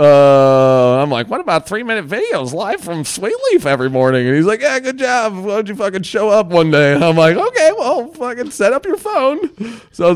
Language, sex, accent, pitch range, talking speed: English, male, American, 125-175 Hz, 230 wpm